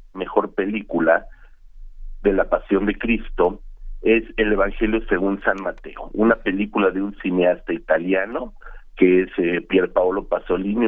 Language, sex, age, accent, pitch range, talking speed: Spanish, male, 50-69, Mexican, 95-110 Hz, 140 wpm